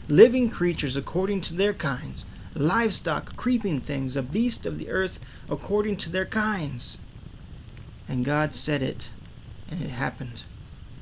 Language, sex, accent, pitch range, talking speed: English, male, American, 130-180 Hz, 135 wpm